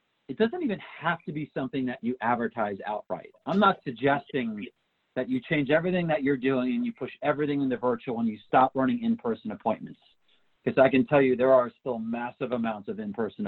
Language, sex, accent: English, male, American